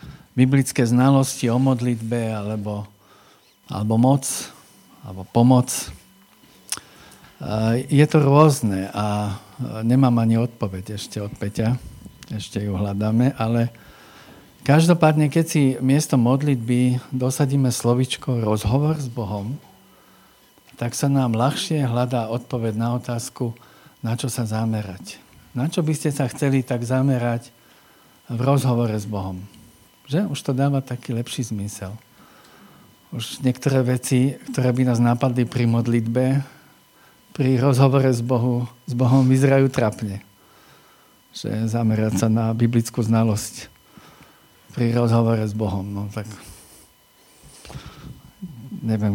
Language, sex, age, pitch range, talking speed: Slovak, male, 50-69, 110-130 Hz, 115 wpm